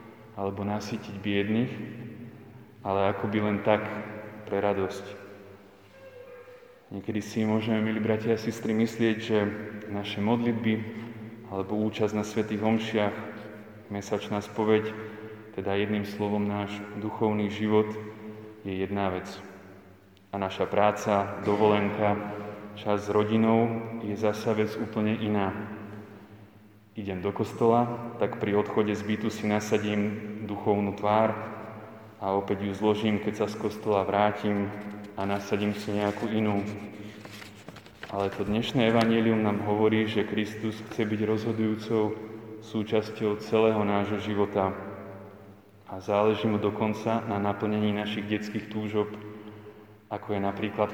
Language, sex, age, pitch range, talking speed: Slovak, male, 20-39, 105-110 Hz, 120 wpm